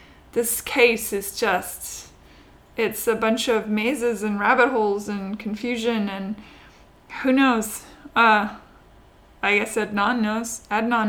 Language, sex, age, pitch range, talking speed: English, female, 20-39, 210-240 Hz, 125 wpm